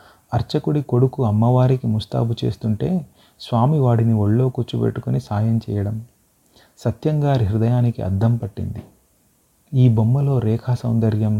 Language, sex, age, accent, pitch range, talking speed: Telugu, male, 30-49, native, 105-120 Hz, 95 wpm